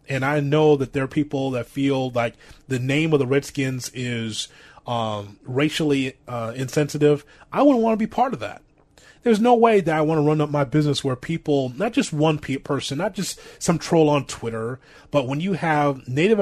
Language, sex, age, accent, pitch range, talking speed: English, male, 30-49, American, 140-190 Hz, 210 wpm